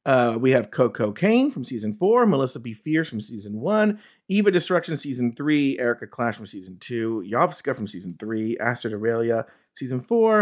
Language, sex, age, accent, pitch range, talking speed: English, male, 40-59, American, 120-205 Hz, 175 wpm